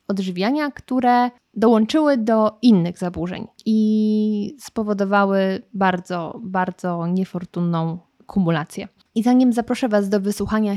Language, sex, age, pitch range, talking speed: Polish, female, 20-39, 185-230 Hz, 100 wpm